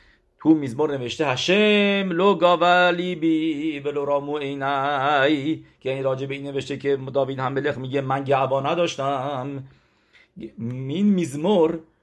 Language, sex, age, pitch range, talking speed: English, male, 50-69, 115-145 Hz, 115 wpm